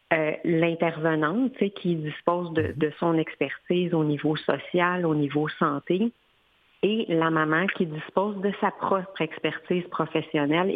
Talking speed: 145 wpm